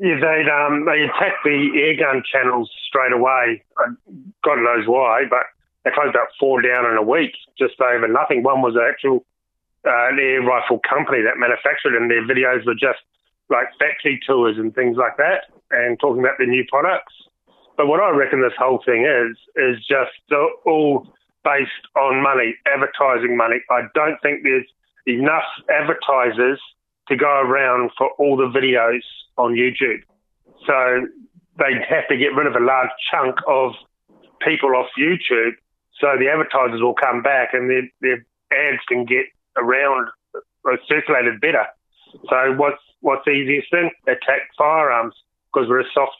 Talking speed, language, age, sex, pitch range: 165 wpm, English, 30-49, male, 125-145 Hz